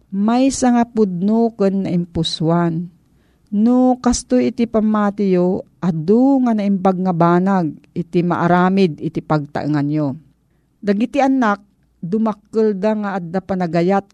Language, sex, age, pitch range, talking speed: Filipino, female, 50-69, 170-215 Hz, 115 wpm